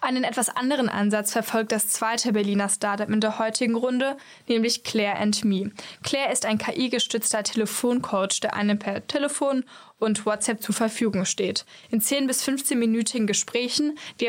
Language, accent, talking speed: German, German, 150 wpm